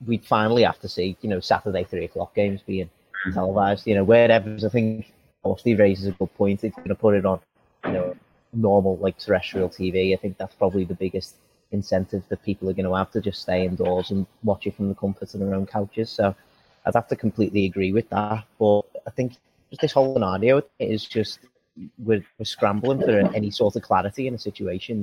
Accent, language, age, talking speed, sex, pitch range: British, English, 30-49, 215 wpm, male, 95-110 Hz